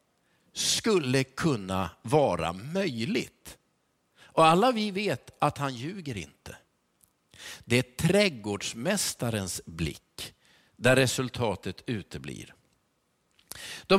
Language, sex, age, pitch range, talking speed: Swedish, male, 50-69, 125-180 Hz, 85 wpm